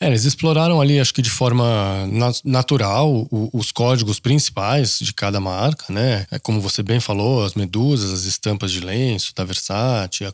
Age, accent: 20-39, Brazilian